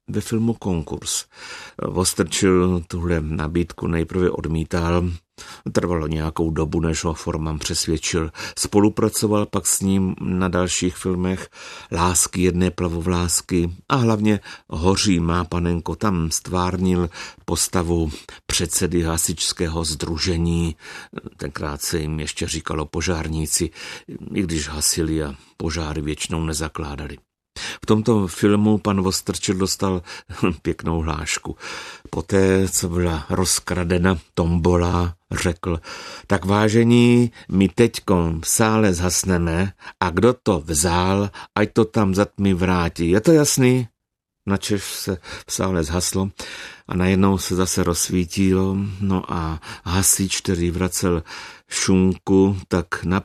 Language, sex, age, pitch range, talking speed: Czech, male, 50-69, 85-95 Hz, 115 wpm